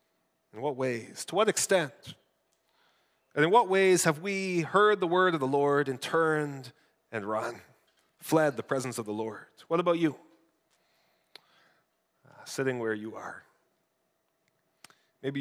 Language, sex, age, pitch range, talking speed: English, male, 30-49, 135-175 Hz, 145 wpm